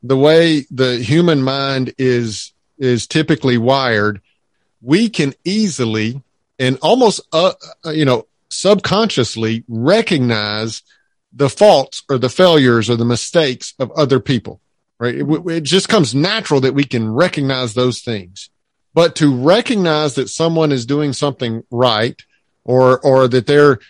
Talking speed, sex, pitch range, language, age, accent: 140 wpm, male, 120-155 Hz, English, 50-69, American